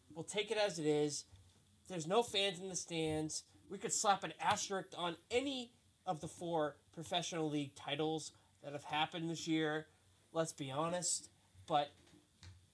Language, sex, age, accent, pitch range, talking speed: English, male, 20-39, American, 150-185 Hz, 160 wpm